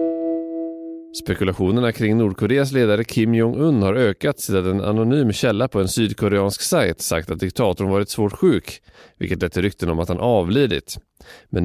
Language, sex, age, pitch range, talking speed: English, male, 30-49, 90-115 Hz, 160 wpm